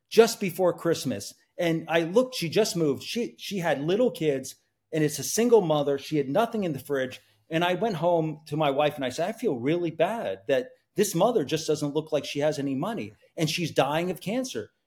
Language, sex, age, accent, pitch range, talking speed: English, male, 40-59, American, 140-185 Hz, 220 wpm